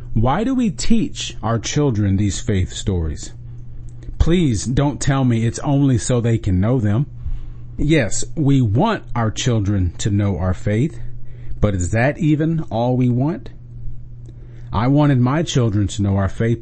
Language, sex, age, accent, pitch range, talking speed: English, male, 40-59, American, 115-140 Hz, 160 wpm